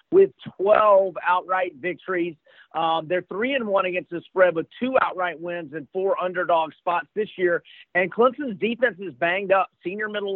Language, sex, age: English, male, 40-59